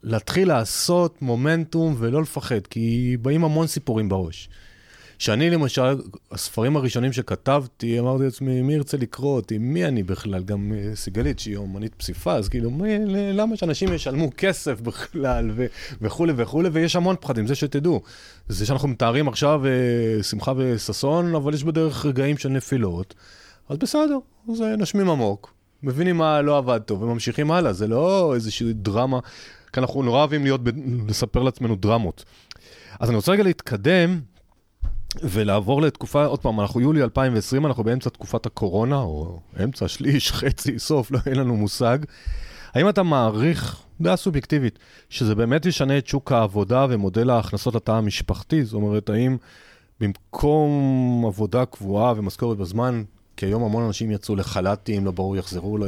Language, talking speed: Hebrew, 150 wpm